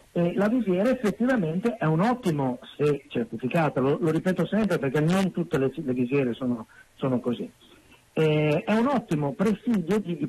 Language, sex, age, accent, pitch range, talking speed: Italian, male, 50-69, native, 150-205 Hz, 170 wpm